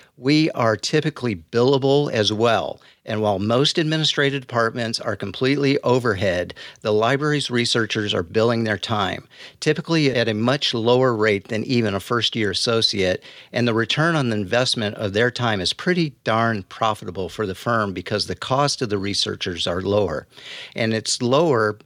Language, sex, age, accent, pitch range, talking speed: English, male, 50-69, American, 105-130 Hz, 160 wpm